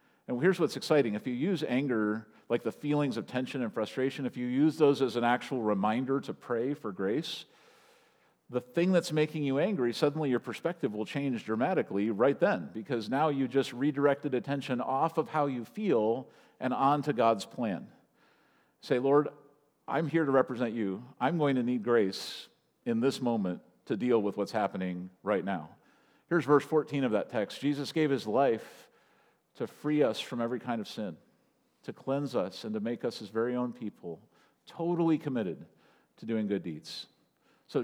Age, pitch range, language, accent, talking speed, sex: 50-69, 110-145 Hz, English, American, 180 wpm, male